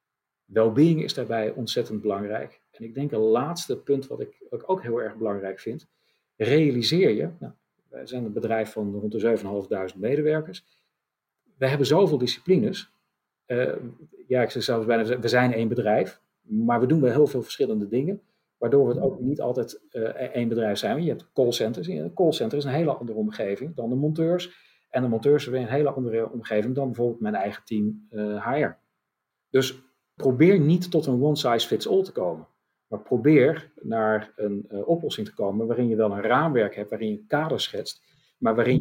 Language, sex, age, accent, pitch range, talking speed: Dutch, male, 40-59, Dutch, 110-155 Hz, 185 wpm